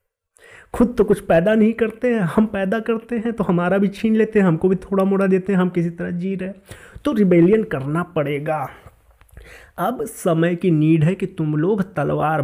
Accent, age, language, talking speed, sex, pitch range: native, 30-49, Hindi, 200 wpm, male, 160-205 Hz